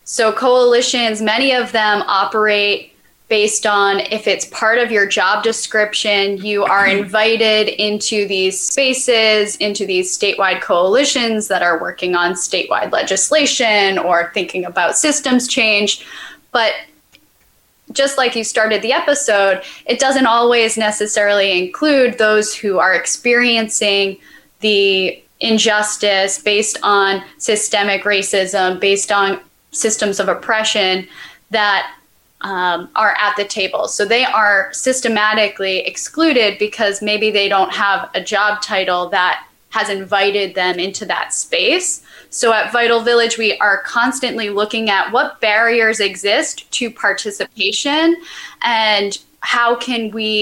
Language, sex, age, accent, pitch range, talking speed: English, female, 10-29, American, 200-230 Hz, 125 wpm